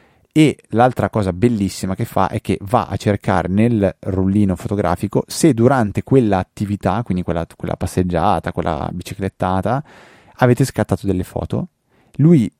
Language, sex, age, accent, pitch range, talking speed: Italian, male, 20-39, native, 95-115 Hz, 135 wpm